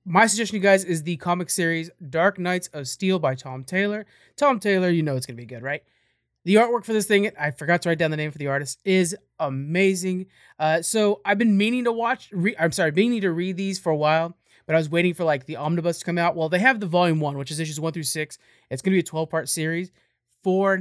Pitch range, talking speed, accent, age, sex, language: 150-195 Hz, 255 wpm, American, 30-49, male, English